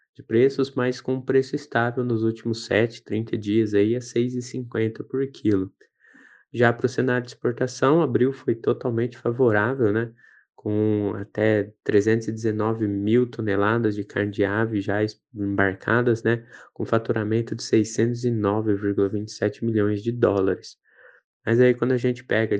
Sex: male